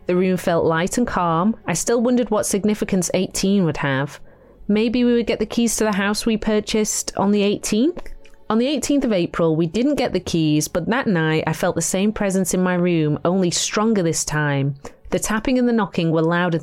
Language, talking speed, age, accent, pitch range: English, 215 wpm, 30-49, British, 160-215 Hz